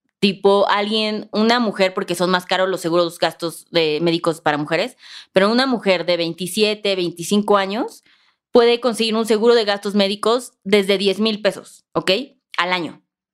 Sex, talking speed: female, 165 wpm